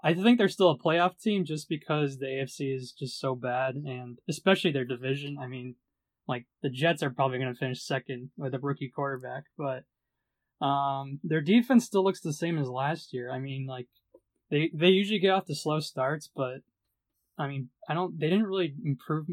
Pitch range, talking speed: 135-155 Hz, 200 wpm